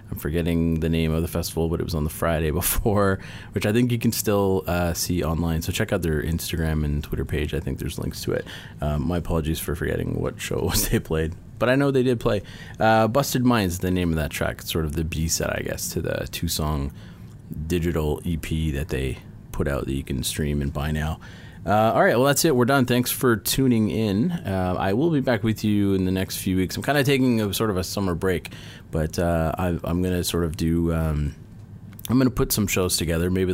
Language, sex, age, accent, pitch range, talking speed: English, male, 30-49, American, 80-105 Hz, 240 wpm